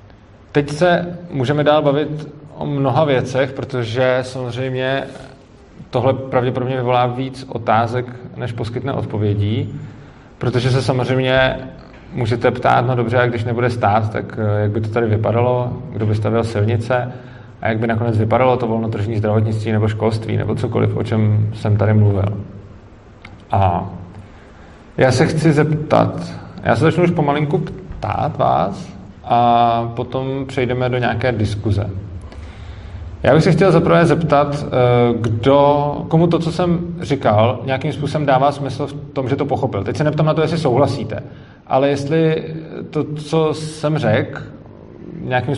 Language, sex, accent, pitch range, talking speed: Czech, male, native, 110-140 Hz, 145 wpm